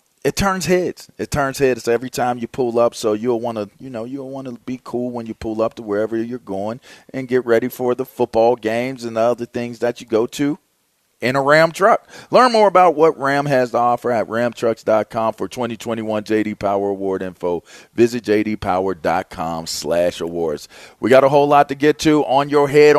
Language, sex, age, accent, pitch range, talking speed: English, male, 40-59, American, 110-145 Hz, 205 wpm